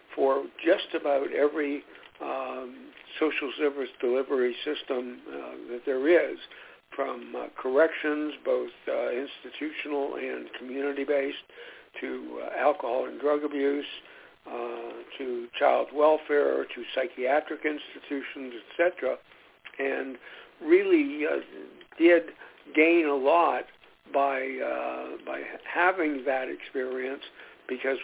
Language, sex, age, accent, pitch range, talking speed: English, male, 60-79, American, 130-155 Hz, 110 wpm